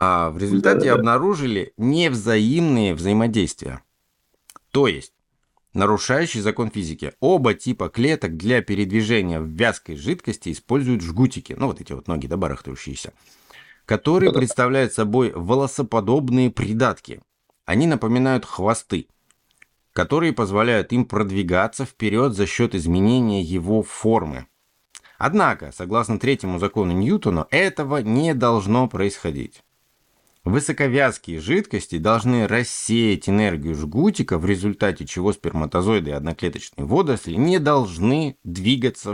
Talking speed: 105 wpm